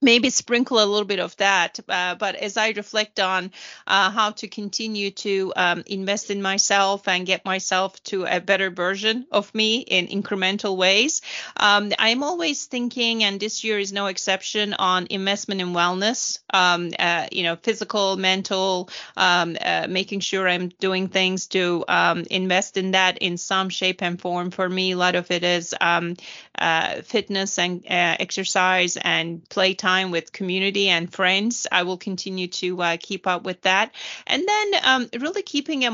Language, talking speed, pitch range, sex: English, 175 wpm, 180-205 Hz, female